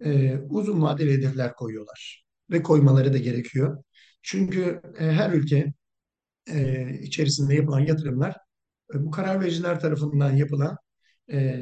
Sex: male